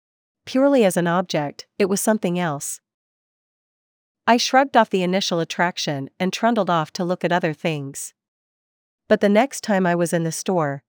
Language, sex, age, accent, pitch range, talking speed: English, female, 40-59, American, 160-200 Hz, 170 wpm